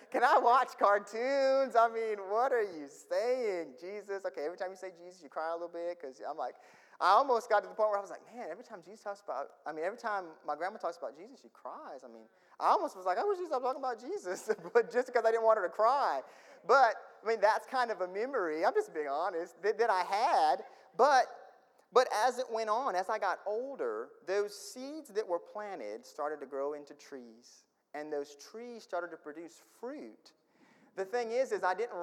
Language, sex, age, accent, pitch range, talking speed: English, male, 30-49, American, 160-245 Hz, 230 wpm